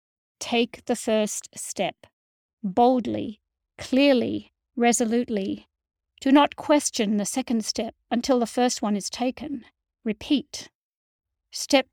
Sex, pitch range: female, 215-255 Hz